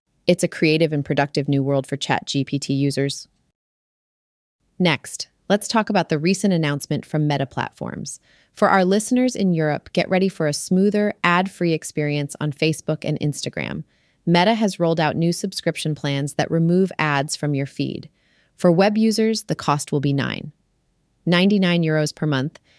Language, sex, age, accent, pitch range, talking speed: English, female, 30-49, American, 150-180 Hz, 160 wpm